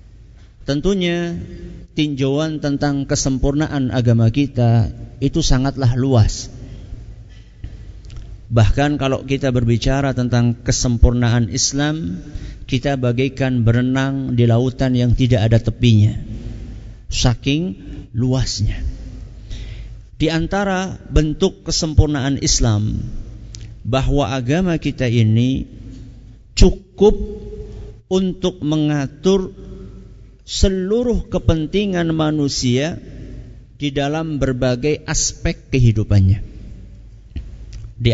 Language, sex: Malay, male